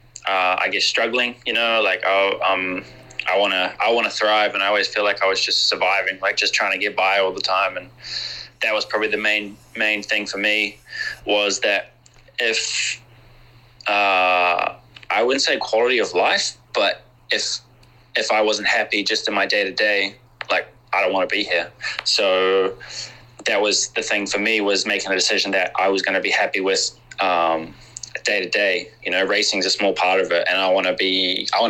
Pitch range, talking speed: 95-115 Hz, 205 wpm